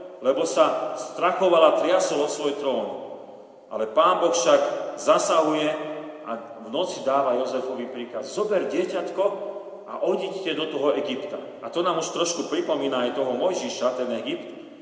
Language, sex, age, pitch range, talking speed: Slovak, male, 40-59, 135-180 Hz, 145 wpm